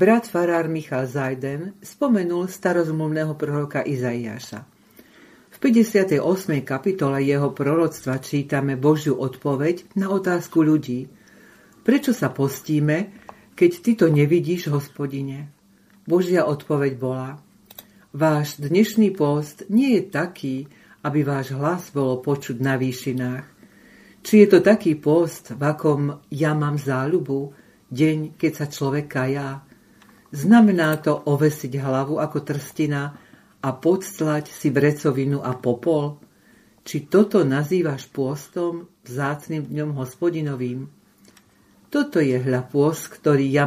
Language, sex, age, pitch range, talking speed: Slovak, female, 50-69, 140-170 Hz, 115 wpm